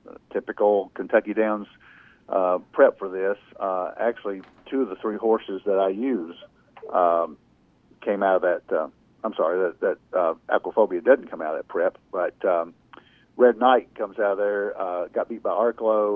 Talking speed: 180 wpm